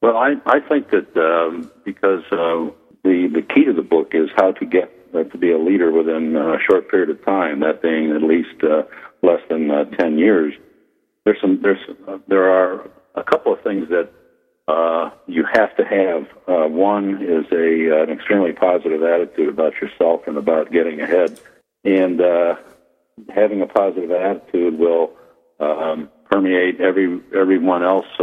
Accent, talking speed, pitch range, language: American, 175 wpm, 80-95 Hz, English